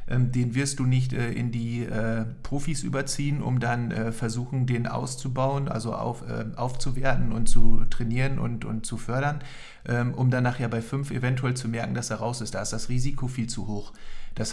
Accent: German